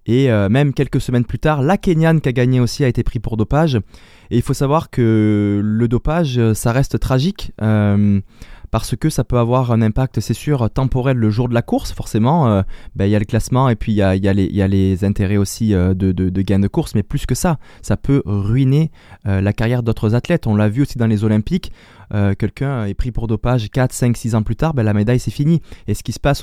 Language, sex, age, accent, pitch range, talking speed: French, male, 20-39, French, 110-140 Hz, 245 wpm